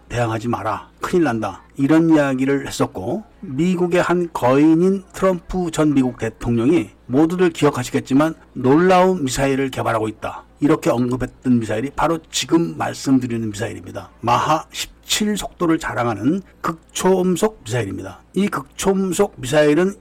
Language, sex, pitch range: Korean, male, 120-160 Hz